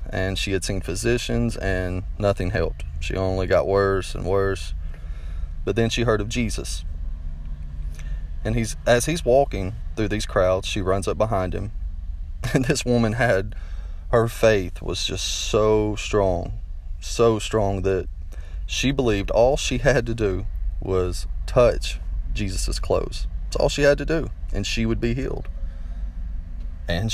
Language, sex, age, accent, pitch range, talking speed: English, male, 30-49, American, 80-115 Hz, 155 wpm